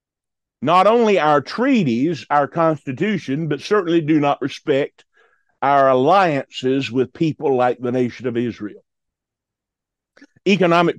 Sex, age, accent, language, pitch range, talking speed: male, 50-69, American, English, 145-205 Hz, 115 wpm